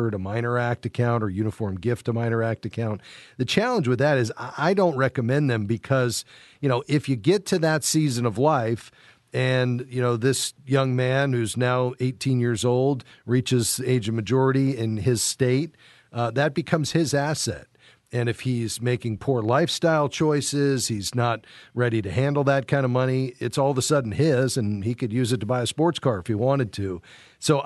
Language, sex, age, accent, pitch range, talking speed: English, male, 40-59, American, 115-140 Hz, 200 wpm